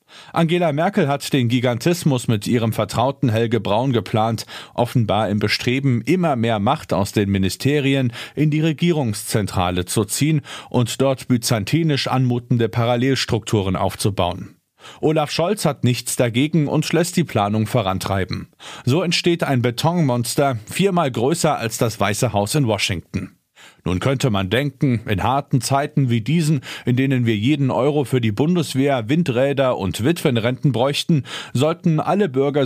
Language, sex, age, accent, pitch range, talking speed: German, male, 40-59, German, 110-150 Hz, 140 wpm